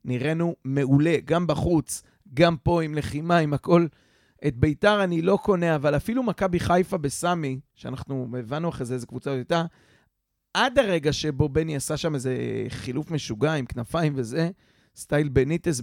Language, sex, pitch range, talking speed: Hebrew, male, 135-170 Hz, 155 wpm